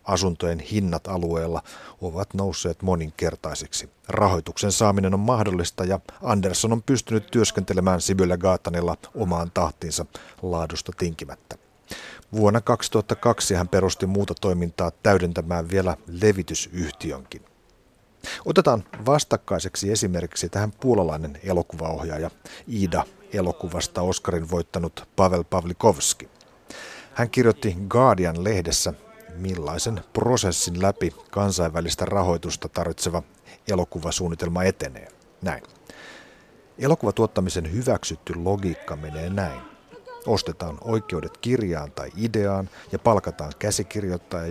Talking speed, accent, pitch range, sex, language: 90 wpm, native, 85-105 Hz, male, Finnish